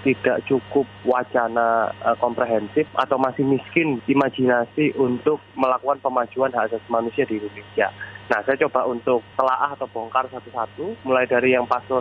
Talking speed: 140 wpm